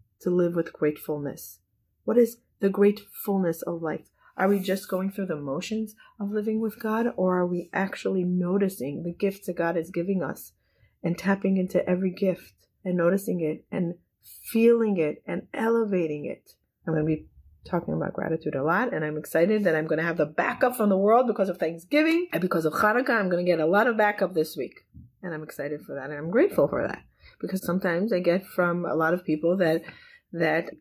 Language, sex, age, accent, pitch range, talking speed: English, female, 30-49, American, 165-220 Hz, 210 wpm